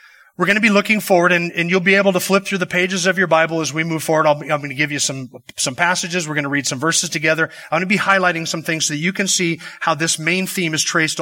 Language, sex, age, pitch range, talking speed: English, male, 30-49, 160-215 Hz, 300 wpm